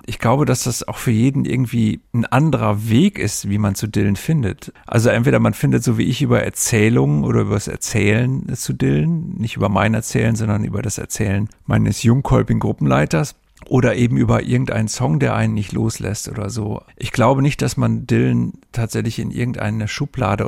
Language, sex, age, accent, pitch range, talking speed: German, male, 50-69, German, 105-125 Hz, 190 wpm